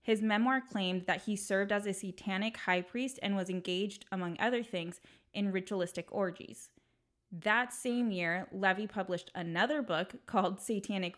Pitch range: 180-210 Hz